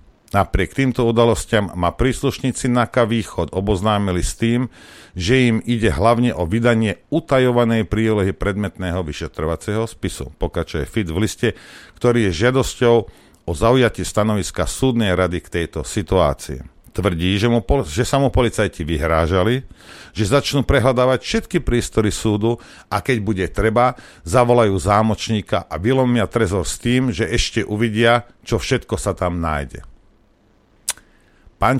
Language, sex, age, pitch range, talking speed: Slovak, male, 50-69, 95-120 Hz, 135 wpm